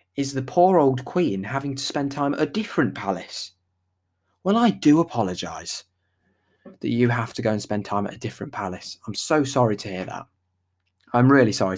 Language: English